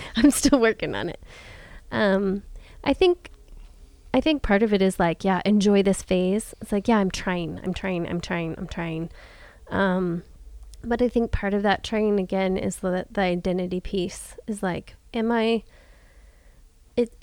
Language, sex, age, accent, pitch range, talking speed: English, female, 20-39, American, 175-210 Hz, 170 wpm